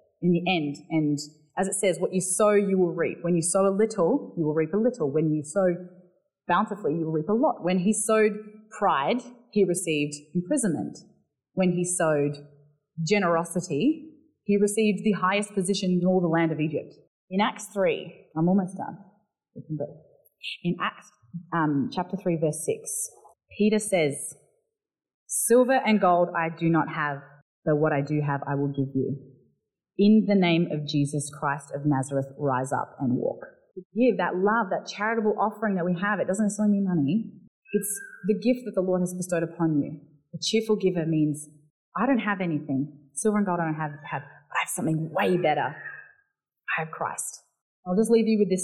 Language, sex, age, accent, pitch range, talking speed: English, female, 30-49, Australian, 155-205 Hz, 190 wpm